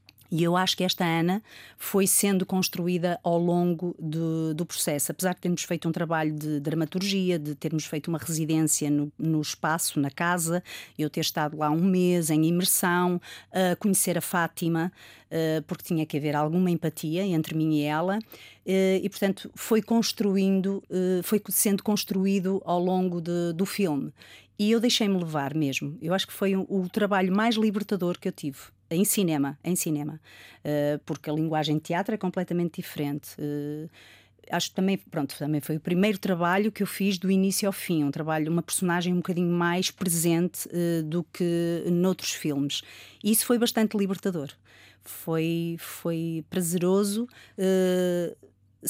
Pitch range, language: 155-195 Hz, Portuguese